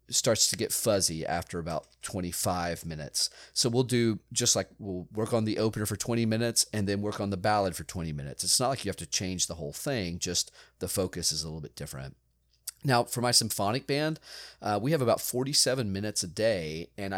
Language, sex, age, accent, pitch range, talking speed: English, male, 40-59, American, 90-115 Hz, 215 wpm